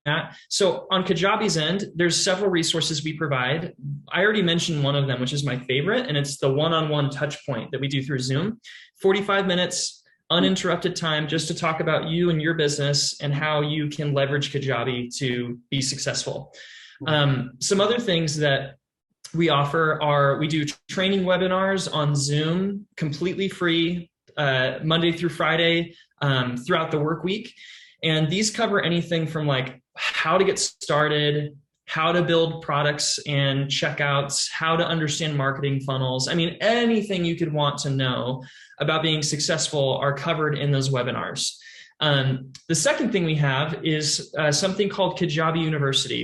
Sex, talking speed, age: male, 165 wpm, 20-39